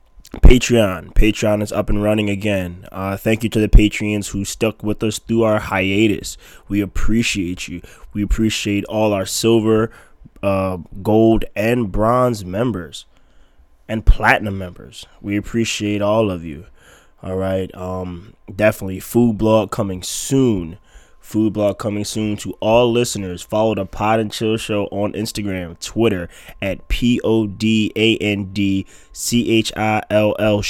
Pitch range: 95-110 Hz